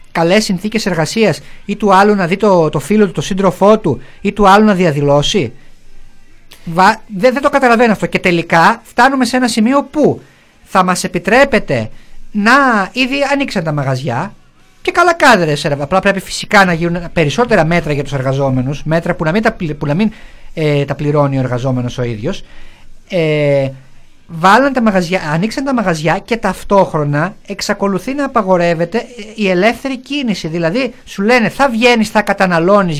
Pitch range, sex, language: 160-230 Hz, male, Greek